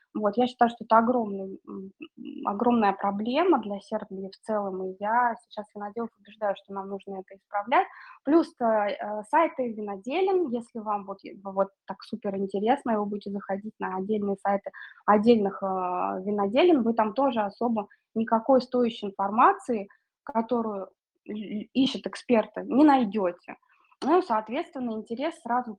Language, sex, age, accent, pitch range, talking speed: Russian, female, 20-39, native, 195-240 Hz, 135 wpm